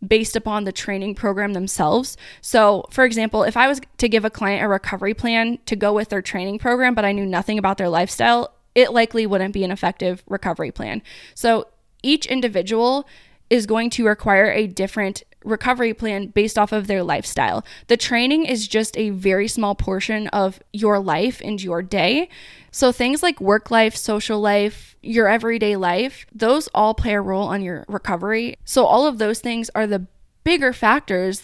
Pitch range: 195-230 Hz